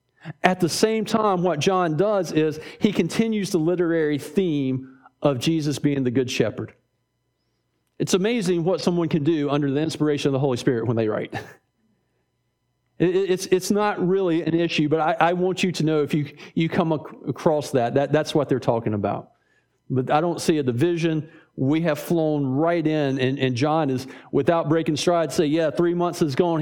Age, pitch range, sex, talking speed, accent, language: 40-59, 130-180 Hz, male, 180 wpm, American, English